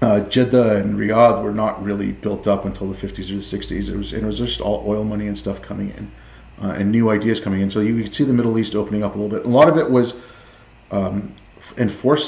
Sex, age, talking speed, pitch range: male, 30-49, 255 wpm, 105-125 Hz